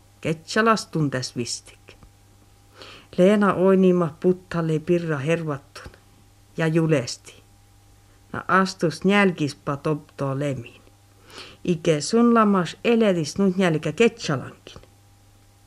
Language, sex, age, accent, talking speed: Finnish, female, 60-79, native, 80 wpm